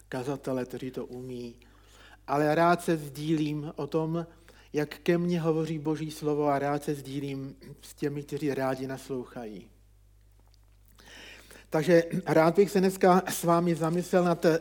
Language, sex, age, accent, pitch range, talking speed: Czech, male, 50-69, native, 130-170 Hz, 145 wpm